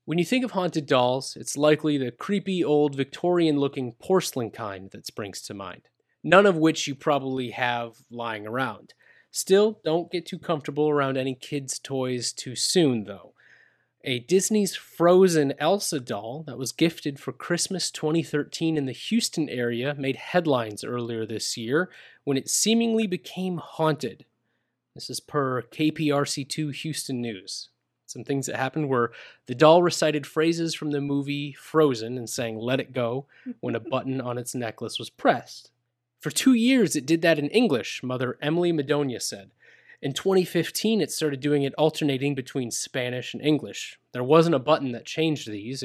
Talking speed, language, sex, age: 165 wpm, English, male, 30-49